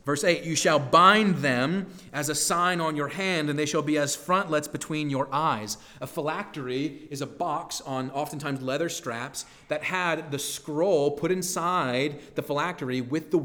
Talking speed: 180 wpm